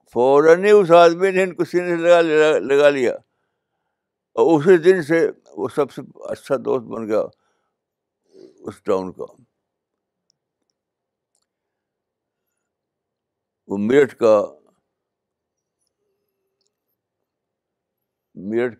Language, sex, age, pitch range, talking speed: Urdu, male, 60-79, 120-185 Hz, 90 wpm